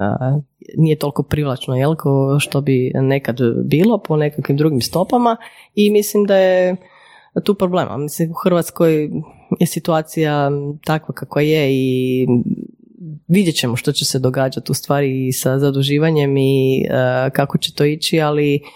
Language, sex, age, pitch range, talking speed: Croatian, female, 30-49, 135-165 Hz, 140 wpm